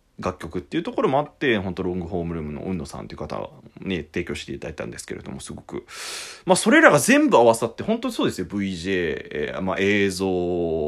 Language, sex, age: Japanese, male, 20-39